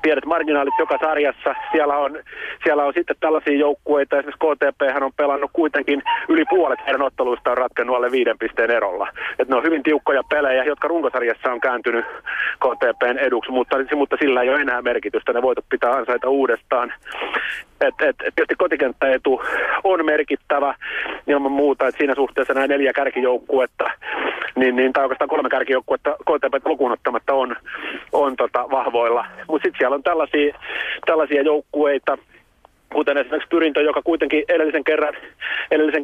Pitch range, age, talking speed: 135-160 Hz, 30-49, 150 wpm